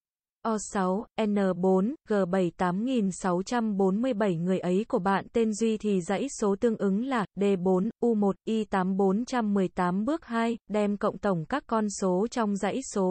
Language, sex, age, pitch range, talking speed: Vietnamese, female, 20-39, 195-230 Hz, 135 wpm